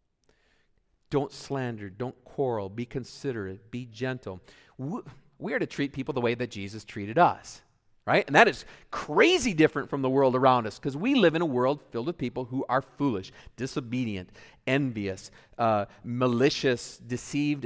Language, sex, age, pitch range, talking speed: English, male, 40-59, 125-200 Hz, 160 wpm